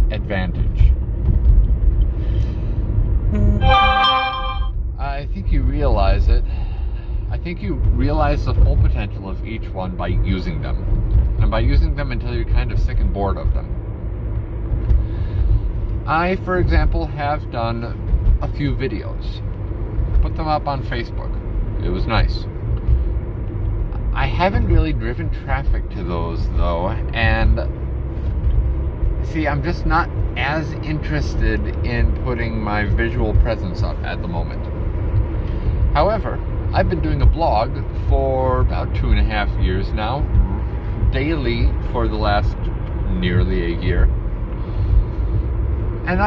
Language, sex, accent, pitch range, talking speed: English, male, American, 90-110 Hz, 120 wpm